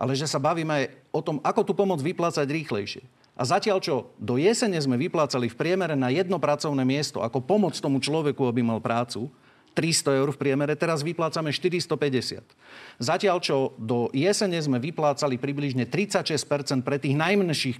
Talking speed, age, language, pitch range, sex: 170 wpm, 40-59, Slovak, 130-165 Hz, male